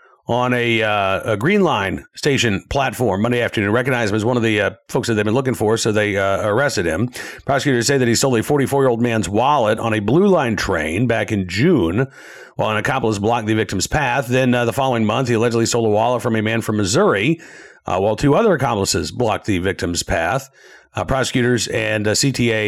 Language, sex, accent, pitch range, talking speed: English, male, American, 110-165 Hz, 215 wpm